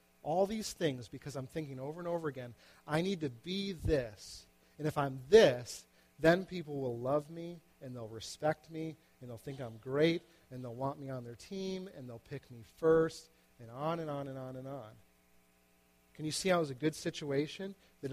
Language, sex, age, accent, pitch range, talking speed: English, male, 40-59, American, 115-155 Hz, 205 wpm